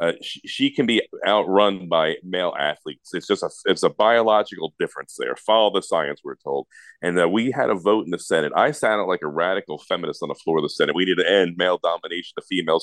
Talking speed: 245 wpm